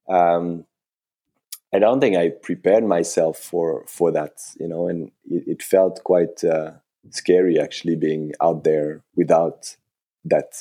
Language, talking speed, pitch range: English, 140 wpm, 85-100 Hz